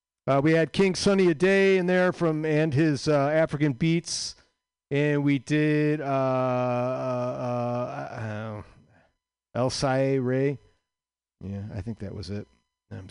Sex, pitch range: male, 110-160 Hz